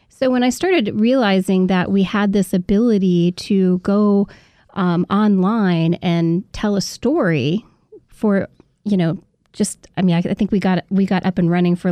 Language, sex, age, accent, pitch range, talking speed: English, female, 30-49, American, 185-225 Hz, 175 wpm